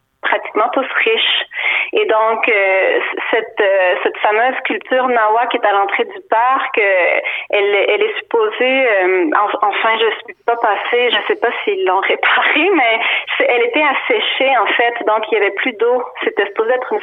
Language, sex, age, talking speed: French, female, 30-49, 185 wpm